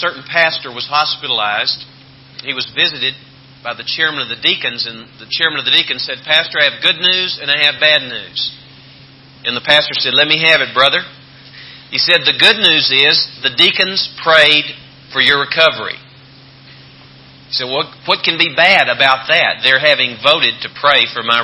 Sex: male